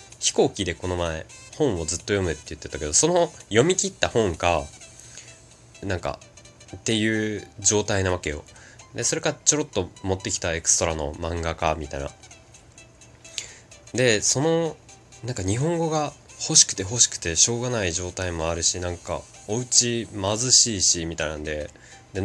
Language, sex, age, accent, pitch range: Japanese, male, 20-39, native, 85-125 Hz